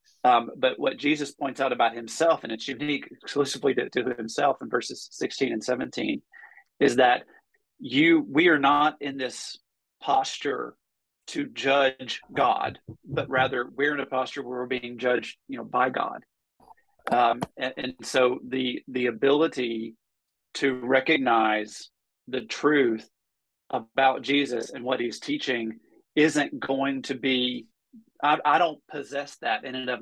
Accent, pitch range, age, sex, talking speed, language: American, 120-145 Hz, 40-59, male, 150 wpm, English